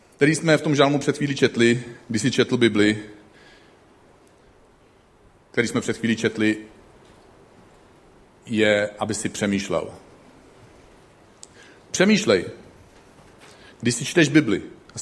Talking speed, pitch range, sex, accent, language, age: 110 wpm, 110-150 Hz, male, native, Czech, 40-59